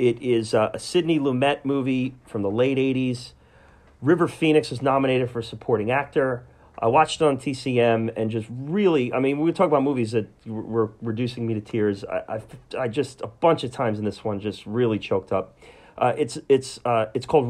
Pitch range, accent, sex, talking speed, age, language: 115-140 Hz, American, male, 205 wpm, 40-59, English